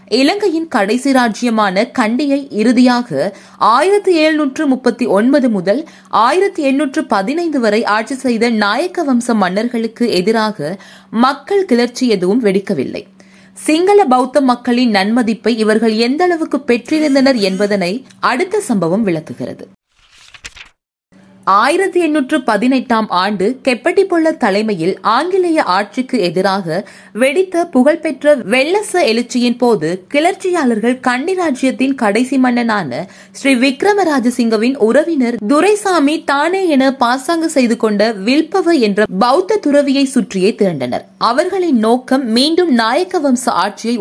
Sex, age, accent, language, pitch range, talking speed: female, 20-39, native, Tamil, 210-295 Hz, 95 wpm